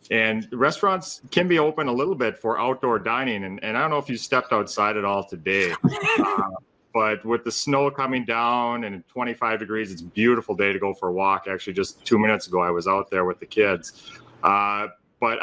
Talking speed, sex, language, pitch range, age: 220 wpm, male, English, 100-130 Hz, 30-49